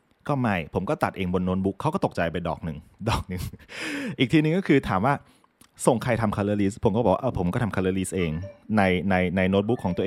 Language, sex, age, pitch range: Thai, male, 20-39, 95-120 Hz